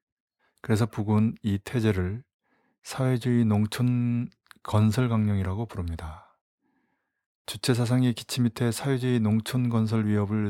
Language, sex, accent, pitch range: Korean, male, native, 100-120 Hz